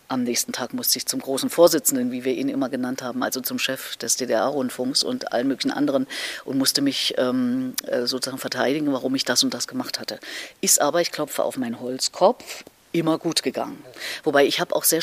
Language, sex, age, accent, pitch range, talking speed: German, female, 50-69, German, 135-180 Hz, 205 wpm